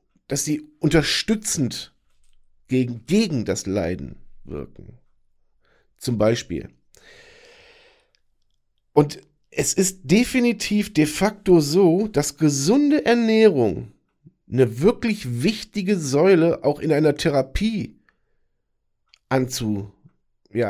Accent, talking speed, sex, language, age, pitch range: German, 85 wpm, male, German, 50-69, 115-155 Hz